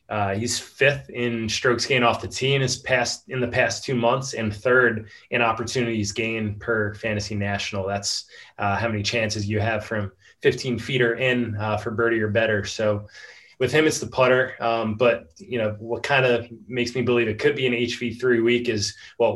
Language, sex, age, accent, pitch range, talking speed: English, male, 20-39, American, 110-125 Hz, 205 wpm